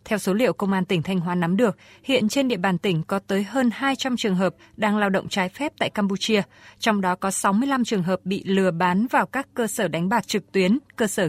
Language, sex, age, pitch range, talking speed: Vietnamese, female, 20-39, 185-230 Hz, 250 wpm